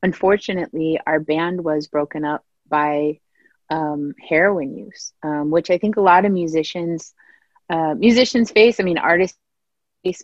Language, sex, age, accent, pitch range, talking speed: English, female, 30-49, American, 155-185 Hz, 145 wpm